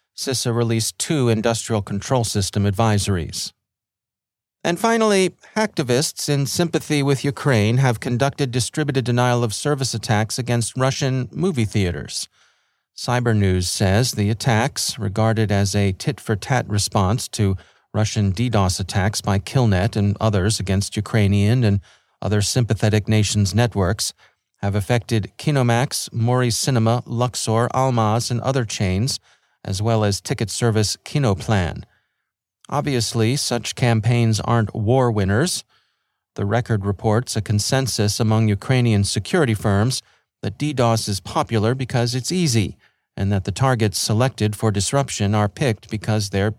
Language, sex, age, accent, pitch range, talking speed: English, male, 40-59, American, 105-130 Hz, 130 wpm